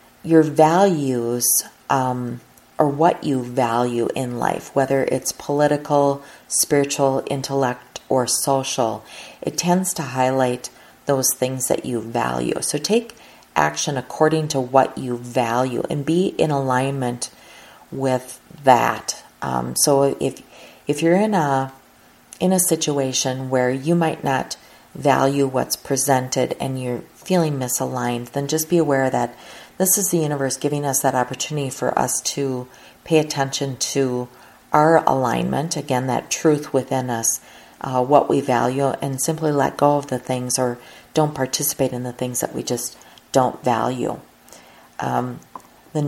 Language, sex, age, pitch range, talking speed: English, female, 40-59, 125-150 Hz, 145 wpm